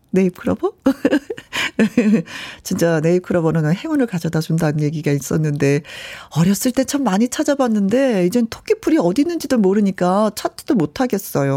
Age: 40-59